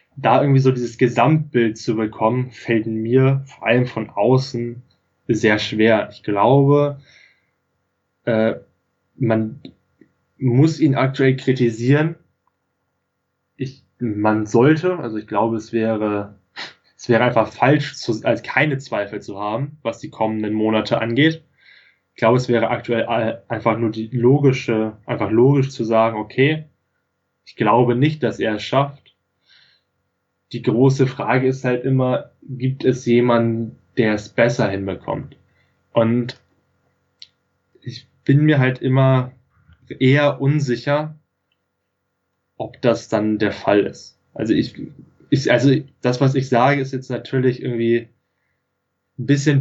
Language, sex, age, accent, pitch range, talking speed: German, male, 10-29, German, 110-135 Hz, 130 wpm